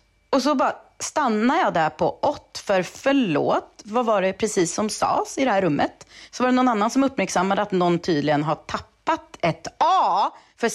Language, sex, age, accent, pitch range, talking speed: English, female, 30-49, Swedish, 165-250 Hz, 200 wpm